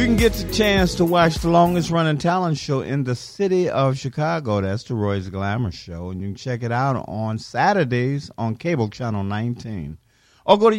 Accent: American